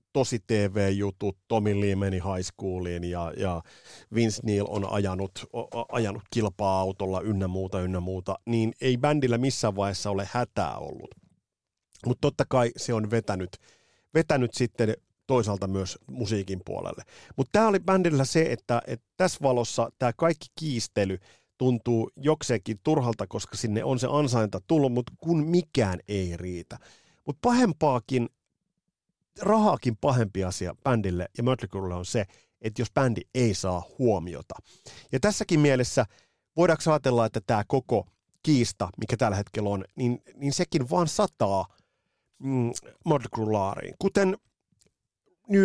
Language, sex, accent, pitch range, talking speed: Finnish, male, native, 100-135 Hz, 130 wpm